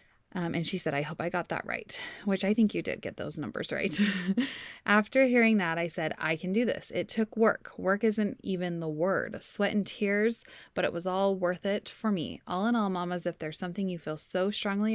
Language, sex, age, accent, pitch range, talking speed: English, female, 20-39, American, 170-205 Hz, 235 wpm